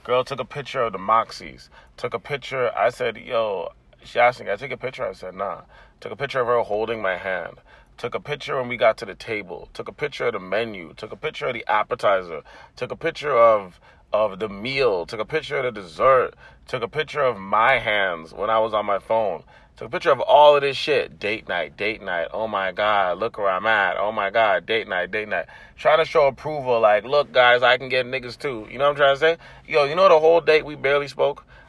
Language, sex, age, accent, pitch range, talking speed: English, male, 30-49, American, 110-140 Hz, 250 wpm